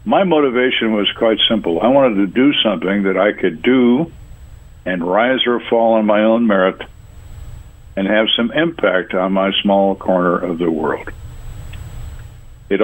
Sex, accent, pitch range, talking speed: male, American, 95-120 Hz, 160 wpm